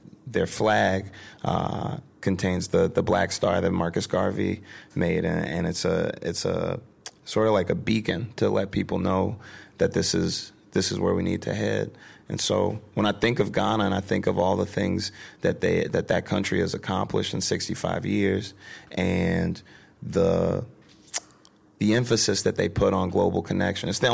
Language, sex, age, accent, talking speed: English, male, 30-49, American, 185 wpm